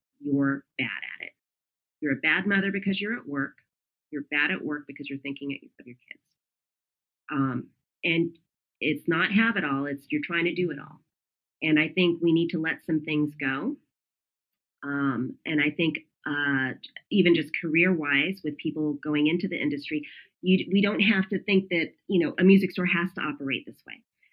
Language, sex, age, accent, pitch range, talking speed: English, female, 30-49, American, 140-180 Hz, 190 wpm